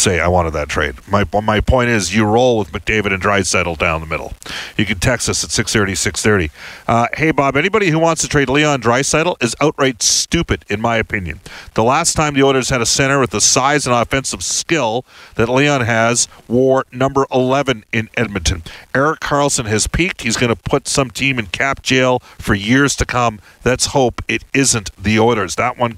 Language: English